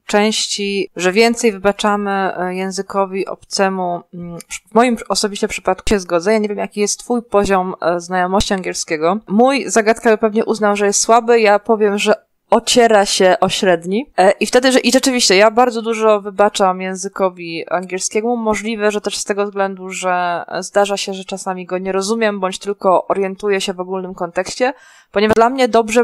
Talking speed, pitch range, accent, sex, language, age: 160 wpm, 185-220 Hz, native, female, Polish, 20-39